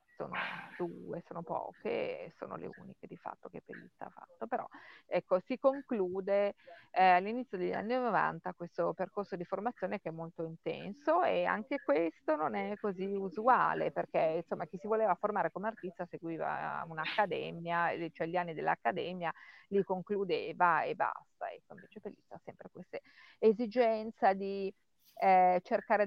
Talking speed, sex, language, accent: 145 wpm, female, Italian, native